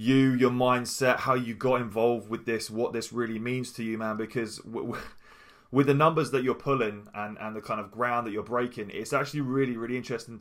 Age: 20-39